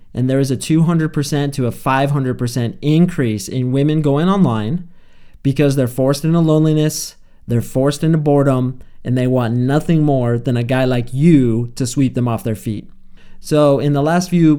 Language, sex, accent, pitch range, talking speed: English, male, American, 120-145 Hz, 175 wpm